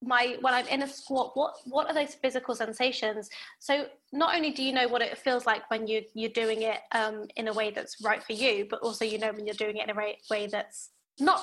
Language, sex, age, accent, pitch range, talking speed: English, female, 20-39, British, 225-275 Hz, 255 wpm